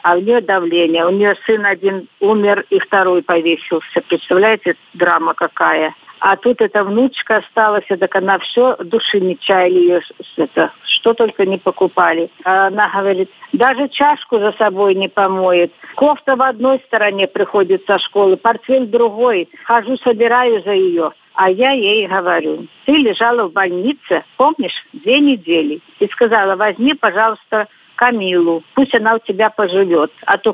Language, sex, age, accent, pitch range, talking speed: Russian, female, 50-69, native, 185-250 Hz, 150 wpm